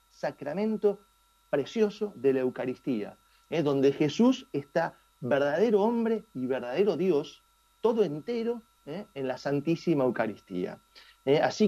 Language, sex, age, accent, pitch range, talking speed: Spanish, male, 40-59, Argentinian, 140-225 Hz, 105 wpm